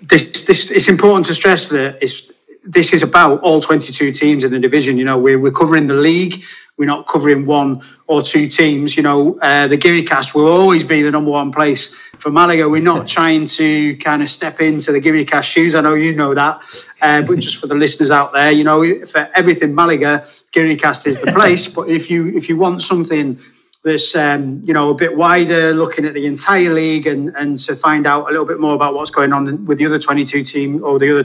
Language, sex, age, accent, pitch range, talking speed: English, male, 30-49, British, 145-165 Hz, 225 wpm